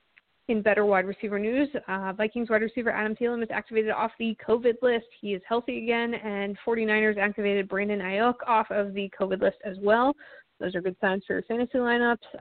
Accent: American